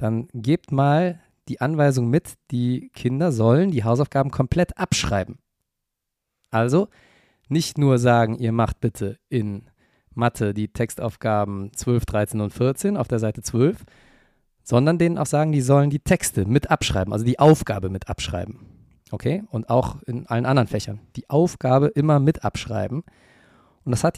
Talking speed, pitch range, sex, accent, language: 155 wpm, 115-150 Hz, male, German, German